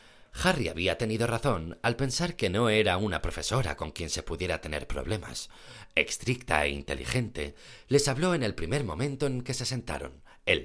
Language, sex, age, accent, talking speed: Spanish, male, 40-59, Spanish, 175 wpm